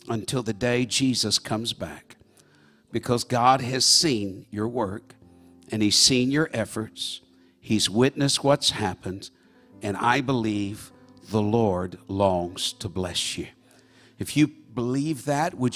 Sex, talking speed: male, 135 wpm